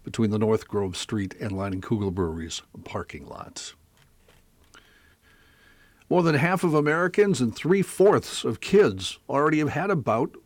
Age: 60-79